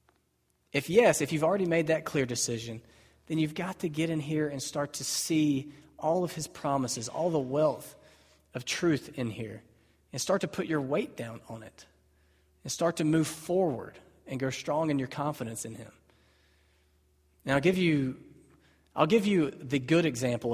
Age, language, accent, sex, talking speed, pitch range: 30-49, English, American, male, 180 wpm, 115-155 Hz